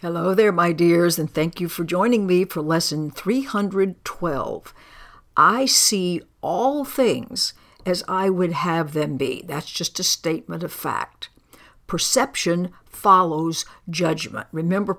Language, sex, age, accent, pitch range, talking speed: English, female, 60-79, American, 165-210 Hz, 130 wpm